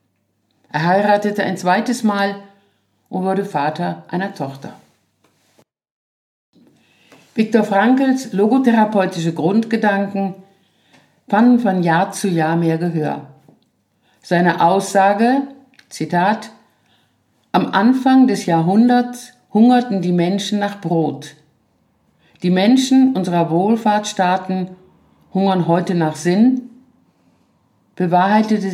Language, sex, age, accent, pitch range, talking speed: German, female, 50-69, German, 170-215 Hz, 90 wpm